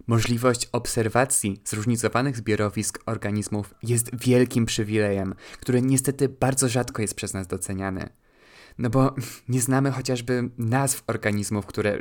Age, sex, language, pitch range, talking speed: 20-39, male, Polish, 105-125 Hz, 120 wpm